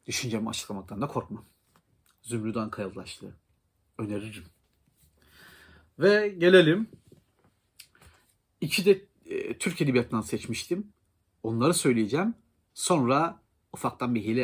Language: Turkish